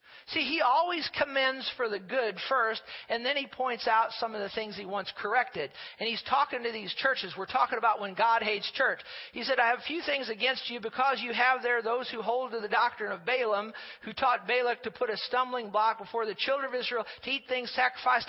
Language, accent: English, American